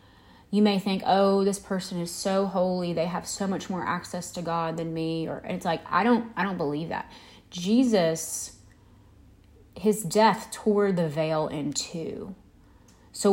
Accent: American